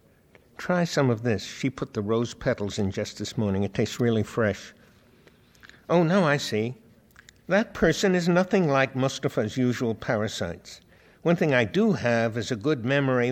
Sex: male